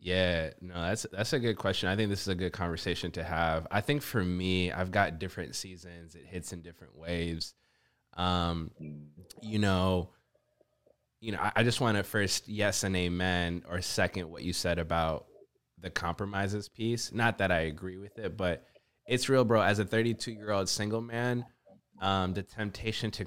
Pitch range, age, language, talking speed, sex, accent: 90-105 Hz, 20-39, English, 185 wpm, male, American